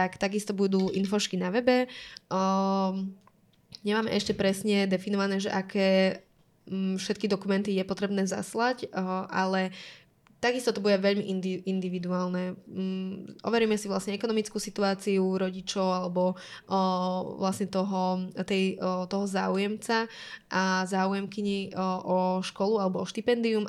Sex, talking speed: female, 115 wpm